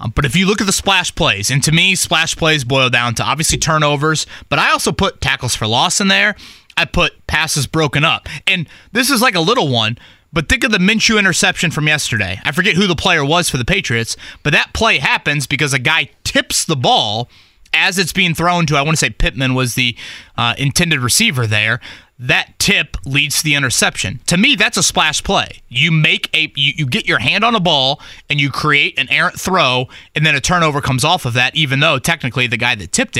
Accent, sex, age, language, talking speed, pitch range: American, male, 30-49, English, 230 wpm, 120-175 Hz